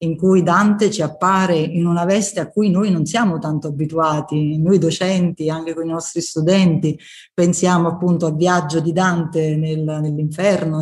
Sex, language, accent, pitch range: female, Italian, native, 155-185 Hz